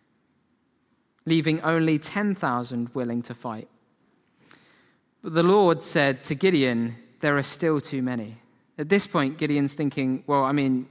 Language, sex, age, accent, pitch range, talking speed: English, male, 20-39, British, 140-185 Hz, 140 wpm